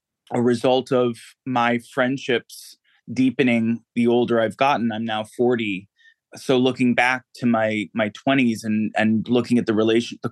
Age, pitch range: 20-39, 110-130 Hz